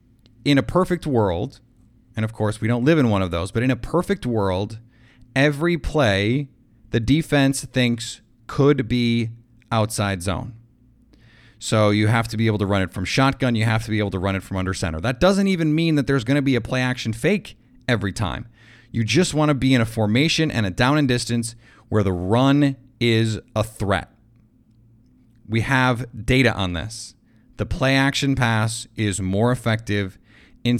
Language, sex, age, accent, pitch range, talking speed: English, male, 30-49, American, 110-130 Hz, 185 wpm